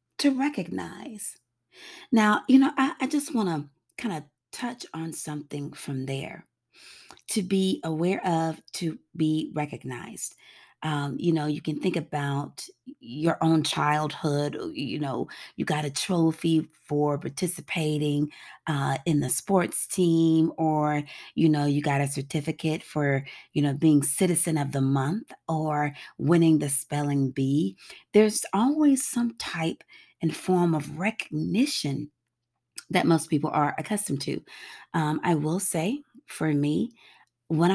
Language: English